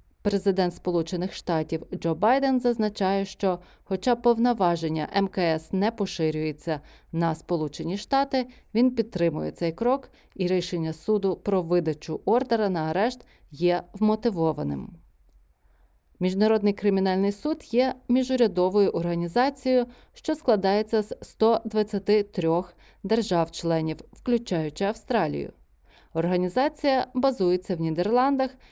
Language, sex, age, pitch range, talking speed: Ukrainian, female, 30-49, 170-240 Hz, 95 wpm